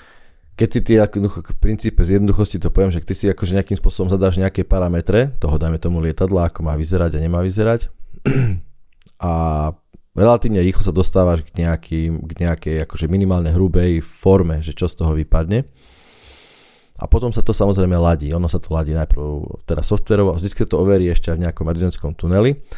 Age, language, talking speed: 20-39, Slovak, 180 wpm